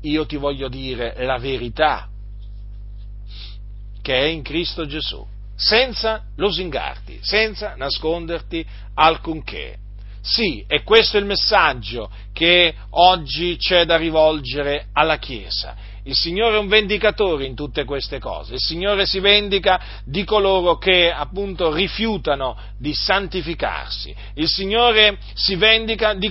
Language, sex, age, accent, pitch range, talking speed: Italian, male, 40-59, native, 140-205 Hz, 125 wpm